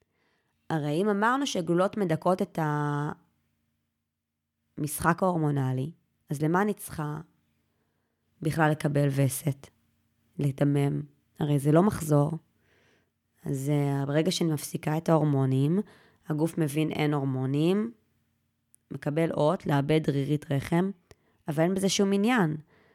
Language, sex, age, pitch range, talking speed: Hebrew, female, 20-39, 150-225 Hz, 105 wpm